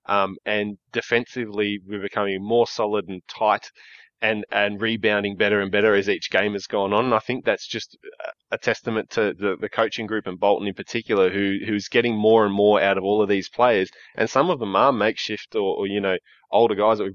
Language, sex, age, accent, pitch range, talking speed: English, male, 20-39, Australian, 100-115 Hz, 220 wpm